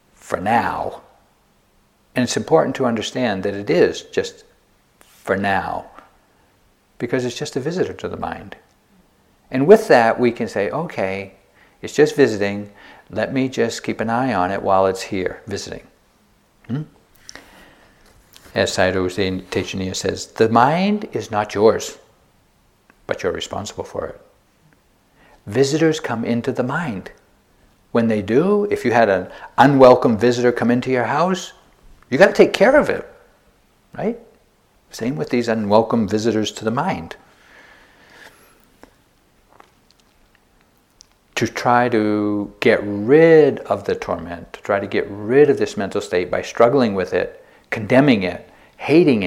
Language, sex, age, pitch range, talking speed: English, male, 60-79, 110-190 Hz, 140 wpm